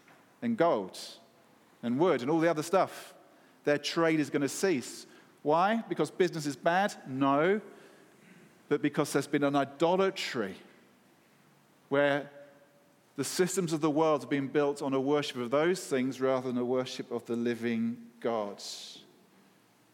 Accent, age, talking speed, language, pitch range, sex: British, 40-59, 150 wpm, English, 125-150 Hz, male